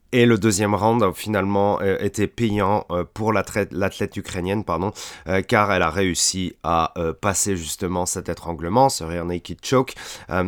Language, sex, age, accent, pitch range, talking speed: French, male, 30-49, French, 95-110 Hz, 160 wpm